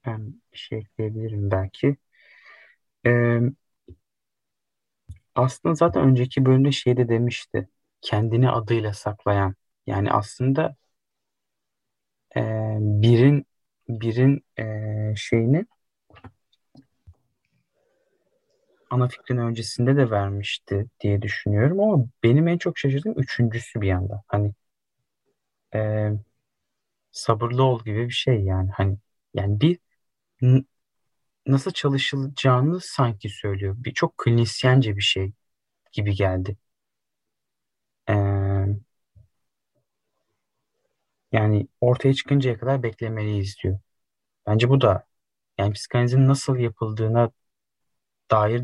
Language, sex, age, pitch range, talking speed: Turkish, male, 30-49, 105-130 Hz, 90 wpm